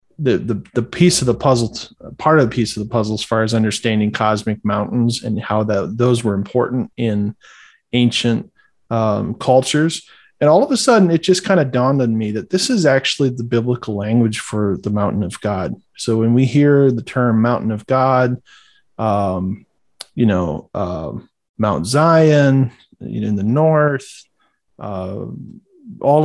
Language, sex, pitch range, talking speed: English, male, 110-135 Hz, 170 wpm